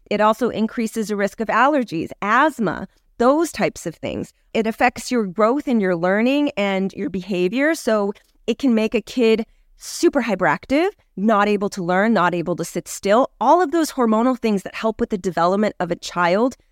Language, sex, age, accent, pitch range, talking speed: English, female, 30-49, American, 190-240 Hz, 185 wpm